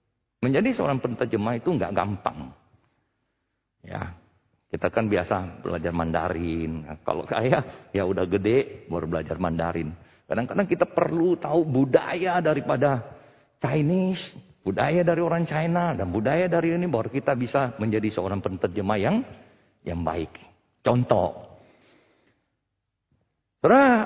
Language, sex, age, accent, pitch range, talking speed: Indonesian, male, 50-69, native, 95-140 Hz, 115 wpm